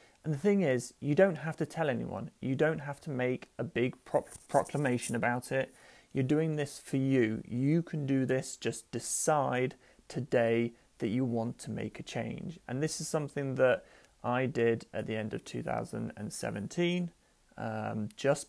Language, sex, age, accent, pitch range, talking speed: English, male, 30-49, British, 120-145 Hz, 175 wpm